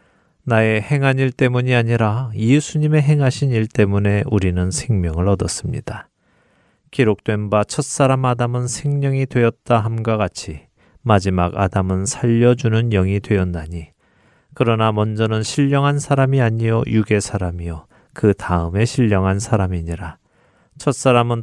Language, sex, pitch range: Korean, male, 100-130 Hz